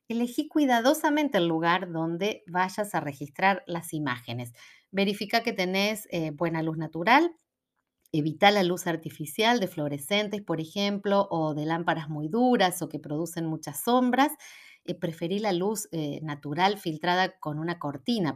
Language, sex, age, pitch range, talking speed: Spanish, female, 40-59, 160-220 Hz, 145 wpm